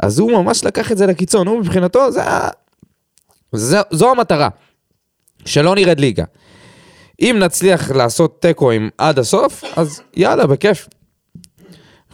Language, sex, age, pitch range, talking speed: Hebrew, male, 20-39, 125-180 Hz, 130 wpm